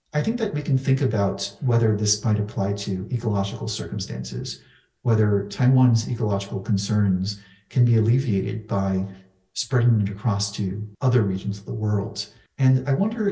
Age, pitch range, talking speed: 40-59, 100-120 Hz, 155 wpm